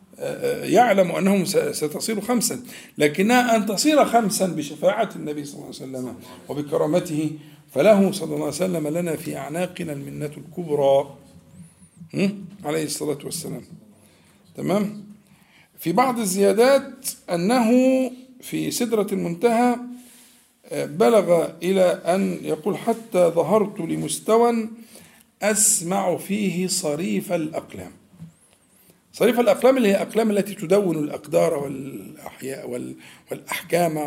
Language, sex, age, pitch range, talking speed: Arabic, male, 50-69, 150-225 Hz, 100 wpm